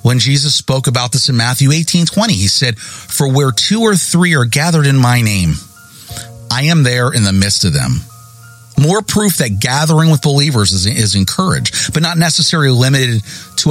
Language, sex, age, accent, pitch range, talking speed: English, male, 40-59, American, 110-160 Hz, 185 wpm